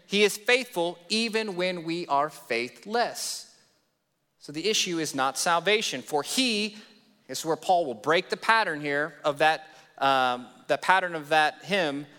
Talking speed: 160 wpm